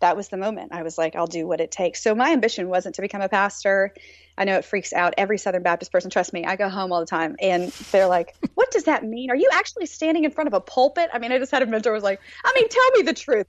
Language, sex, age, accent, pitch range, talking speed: English, female, 30-49, American, 175-245 Hz, 305 wpm